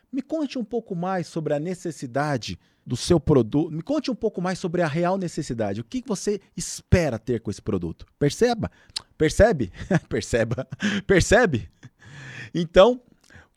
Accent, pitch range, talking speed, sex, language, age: Brazilian, 120-185 Hz, 150 wpm, male, Portuguese, 40-59